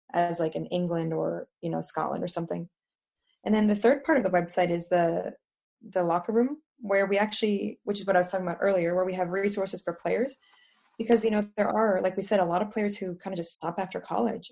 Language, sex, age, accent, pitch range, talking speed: English, female, 20-39, American, 175-205 Hz, 245 wpm